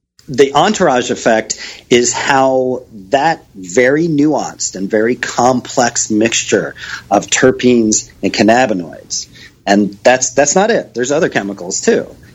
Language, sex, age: English, male, 40-59